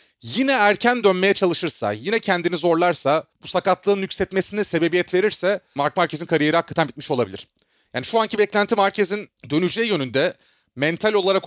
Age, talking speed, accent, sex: 30-49, 140 wpm, native, male